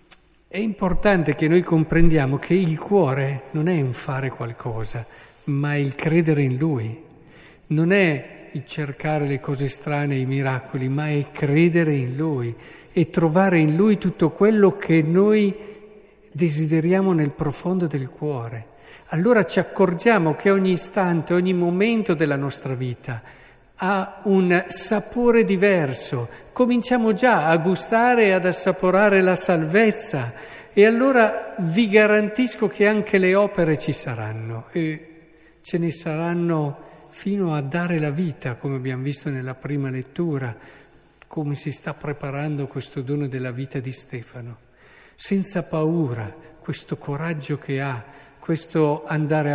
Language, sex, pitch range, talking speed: Italian, male, 140-185 Hz, 135 wpm